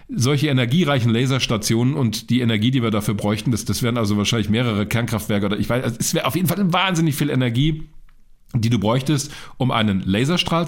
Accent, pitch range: German, 115-170 Hz